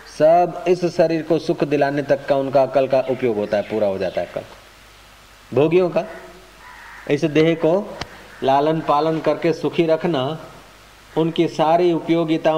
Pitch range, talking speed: 120-160 Hz, 155 wpm